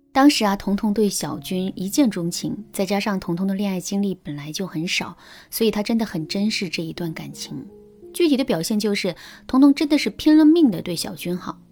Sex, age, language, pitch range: female, 20-39, Chinese, 180-245 Hz